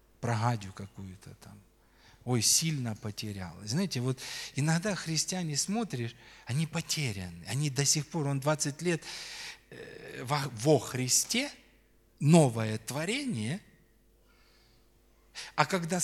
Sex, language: male, Russian